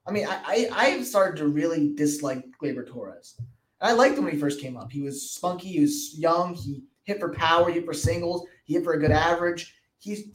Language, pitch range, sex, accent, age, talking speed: English, 145-190 Hz, male, American, 20-39, 230 wpm